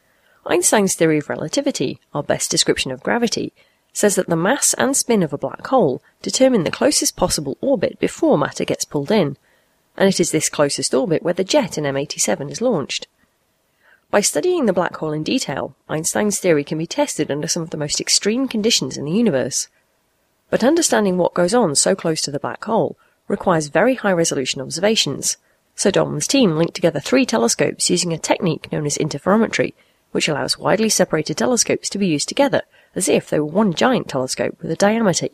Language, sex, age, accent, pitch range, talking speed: English, female, 30-49, British, 155-225 Hz, 190 wpm